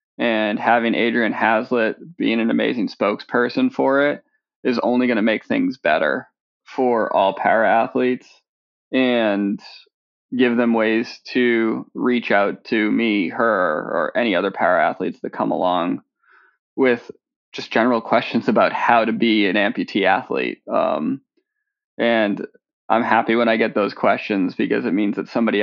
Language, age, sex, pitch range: English, 20-39, male, 110-125 Hz